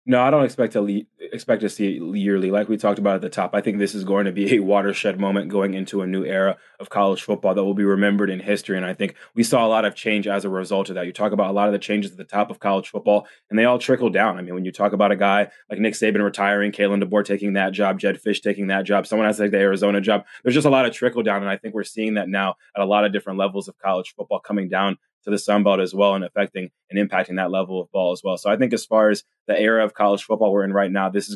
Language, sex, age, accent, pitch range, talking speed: English, male, 20-39, American, 100-105 Hz, 310 wpm